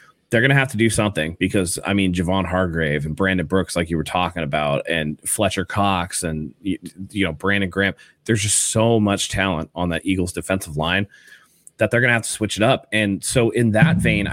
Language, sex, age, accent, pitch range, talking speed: English, male, 30-49, American, 90-115 Hz, 220 wpm